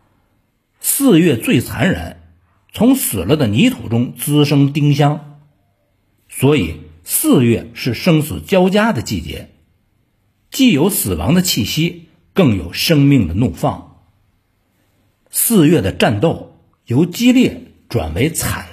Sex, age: male, 50-69